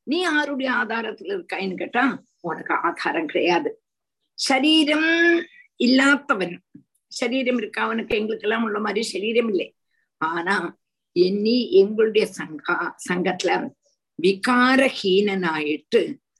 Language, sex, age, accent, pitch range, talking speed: Tamil, female, 50-69, native, 190-300 Hz, 90 wpm